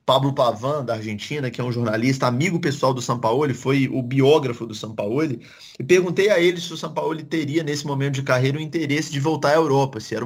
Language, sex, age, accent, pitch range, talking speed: Portuguese, male, 20-39, Brazilian, 120-155 Hz, 215 wpm